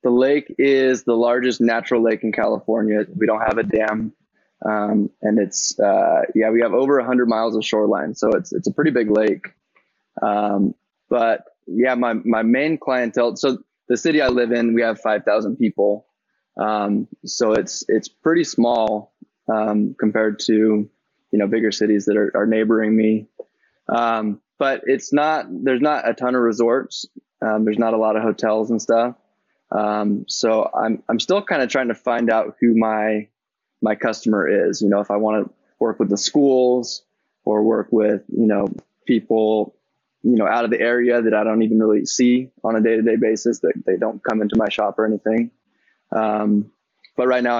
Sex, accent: male, American